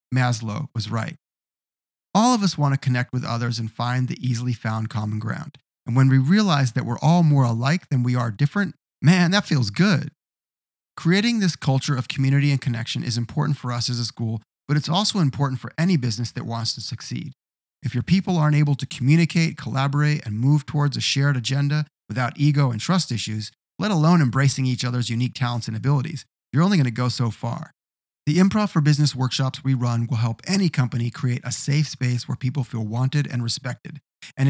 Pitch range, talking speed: 120-150 Hz, 205 wpm